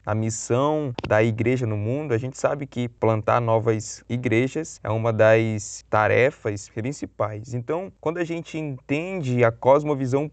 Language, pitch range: Portuguese, 115-150 Hz